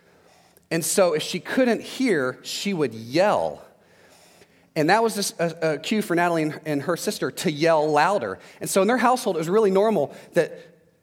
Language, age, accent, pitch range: English, 30-49, American, 165-235 Hz